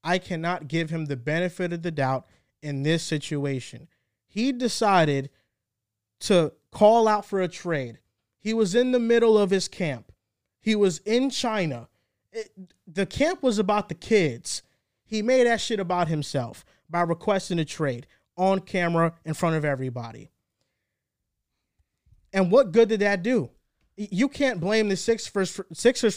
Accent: American